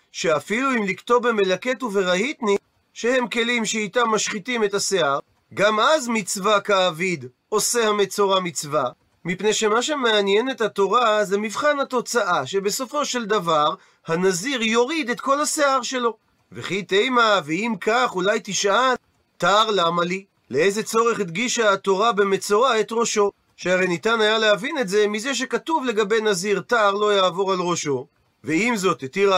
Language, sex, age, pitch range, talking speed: Hebrew, male, 30-49, 190-235 Hz, 140 wpm